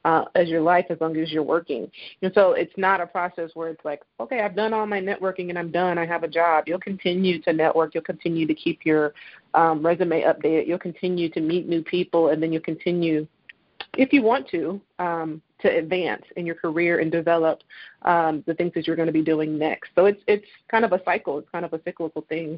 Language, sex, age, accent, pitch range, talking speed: English, female, 30-49, American, 160-185 Hz, 235 wpm